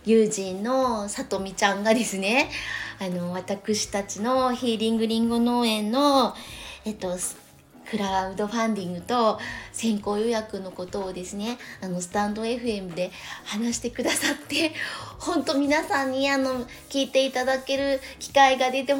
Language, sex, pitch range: Japanese, female, 190-250 Hz